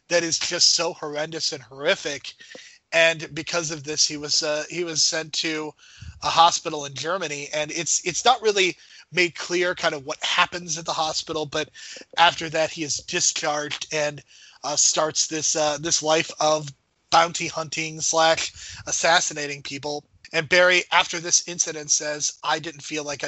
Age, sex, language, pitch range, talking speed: 30-49, male, English, 150-175 Hz, 170 wpm